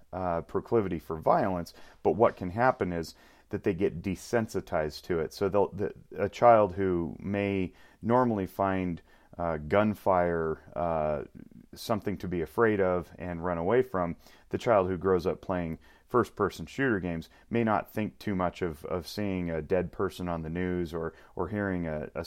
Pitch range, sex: 85-100 Hz, male